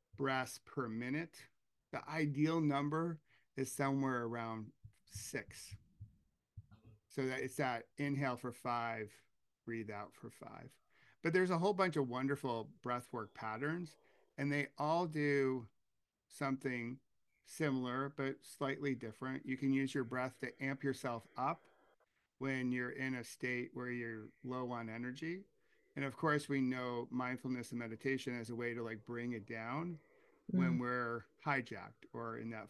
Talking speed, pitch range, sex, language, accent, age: 145 wpm, 120-145 Hz, male, English, American, 50-69